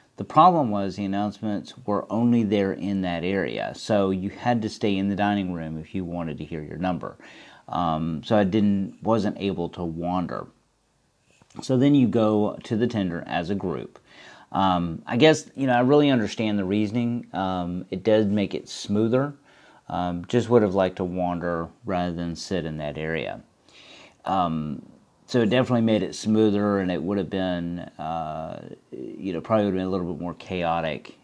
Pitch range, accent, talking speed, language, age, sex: 85-110 Hz, American, 185 wpm, English, 40-59, male